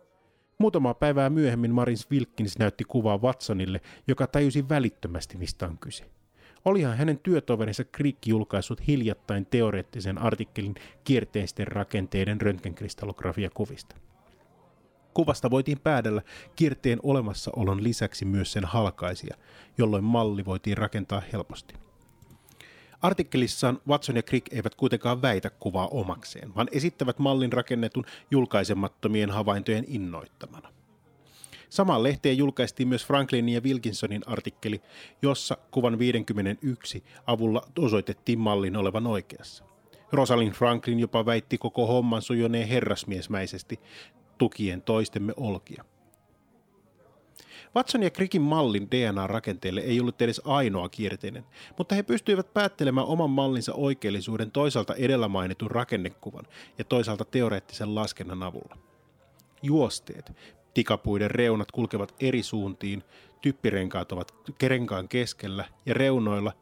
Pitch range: 105-130 Hz